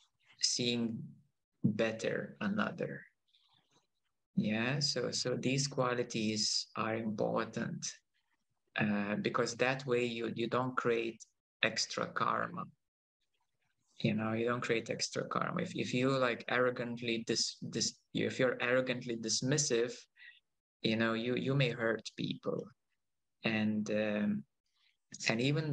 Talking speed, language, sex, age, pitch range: 115 wpm, English, male, 20-39, 110-125 Hz